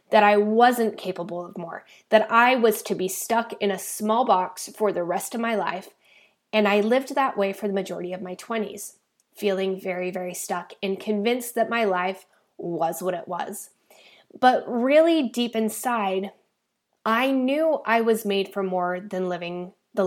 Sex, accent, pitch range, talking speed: female, American, 195-240 Hz, 180 wpm